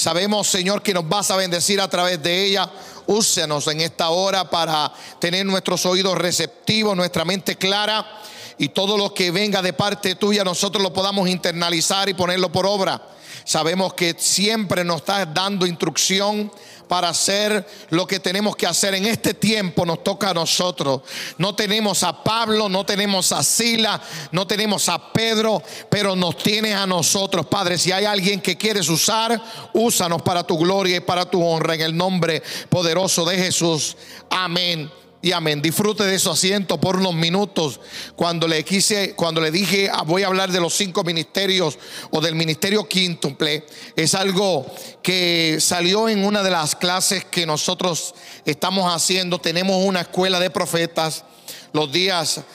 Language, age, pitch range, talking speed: Spanish, 50-69, 170-200 Hz, 165 wpm